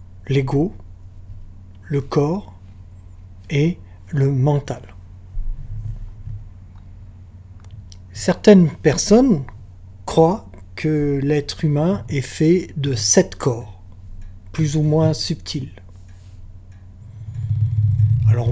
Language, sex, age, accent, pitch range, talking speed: French, male, 60-79, French, 95-155 Hz, 70 wpm